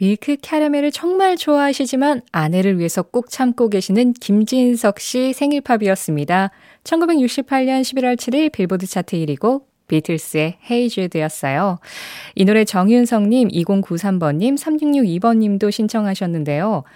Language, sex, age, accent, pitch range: Korean, female, 20-39, native, 170-250 Hz